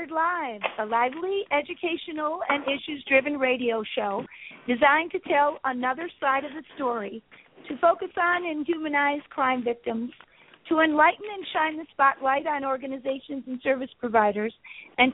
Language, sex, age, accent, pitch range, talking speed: English, female, 50-69, American, 255-310 Hz, 140 wpm